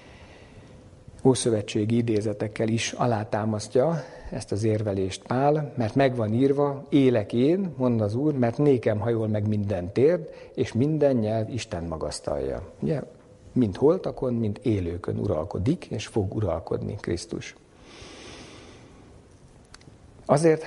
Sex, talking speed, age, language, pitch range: male, 110 wpm, 50-69, Hungarian, 105-140 Hz